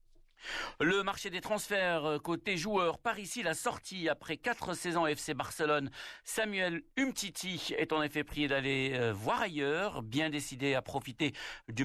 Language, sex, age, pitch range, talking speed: Arabic, male, 60-79, 125-165 Hz, 145 wpm